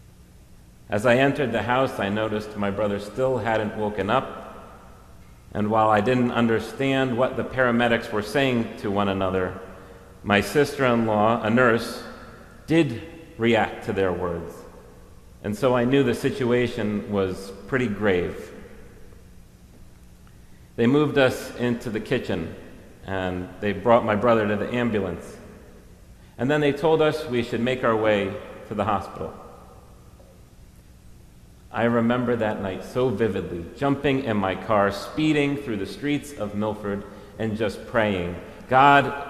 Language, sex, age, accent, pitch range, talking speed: English, male, 40-59, American, 100-125 Hz, 140 wpm